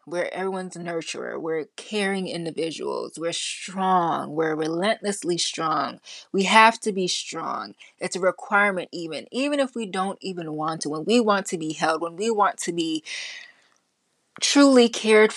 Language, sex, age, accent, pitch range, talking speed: English, female, 20-39, American, 170-225 Hz, 155 wpm